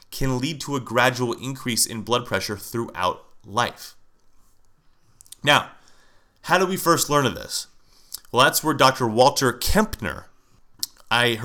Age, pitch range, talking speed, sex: 30-49, 110-140 Hz, 135 wpm, male